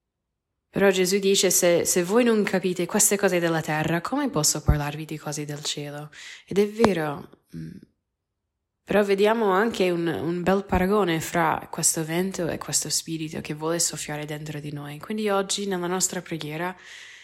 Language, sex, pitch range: Italian, female, 150-185 Hz